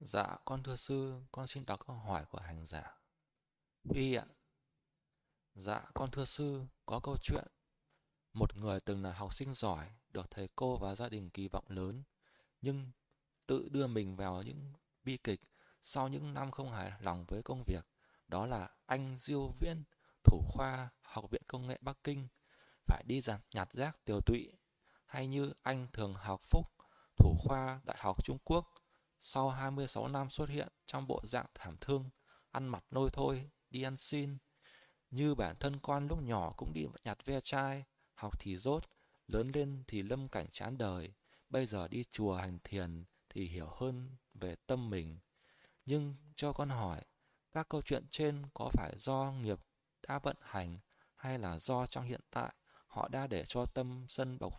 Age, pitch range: 20-39, 100-140 Hz